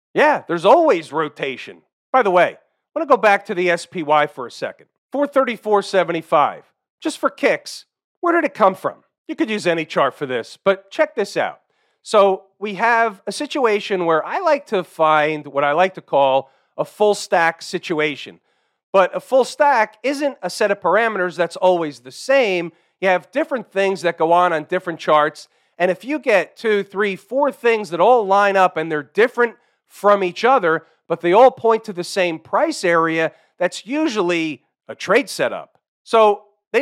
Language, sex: English, male